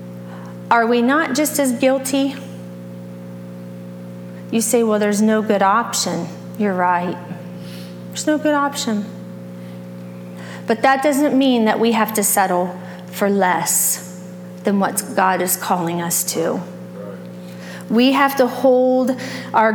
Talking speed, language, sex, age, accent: 130 wpm, English, female, 30-49, American